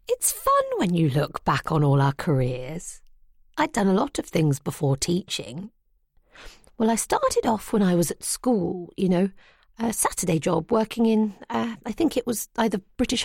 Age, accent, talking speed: 40-59, British, 185 wpm